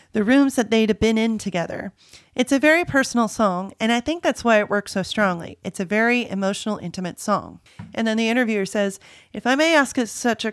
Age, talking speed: 30-49, 220 wpm